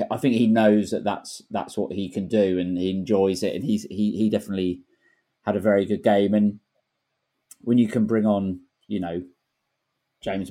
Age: 30-49